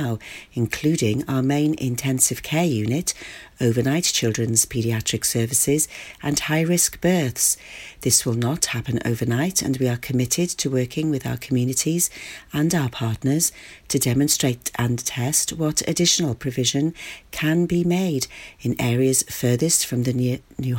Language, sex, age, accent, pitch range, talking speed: English, female, 40-59, British, 120-160 Hz, 135 wpm